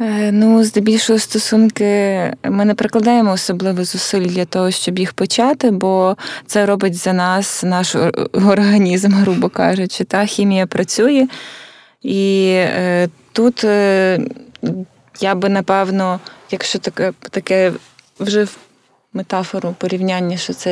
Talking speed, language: 115 wpm, Ukrainian